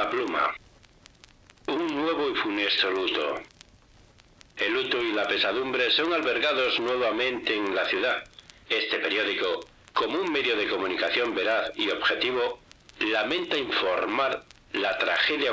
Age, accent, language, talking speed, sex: 60-79, Spanish, English, 120 wpm, male